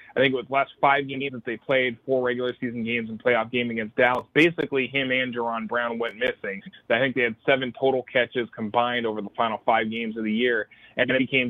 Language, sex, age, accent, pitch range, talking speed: English, male, 20-39, American, 115-135 Hz, 235 wpm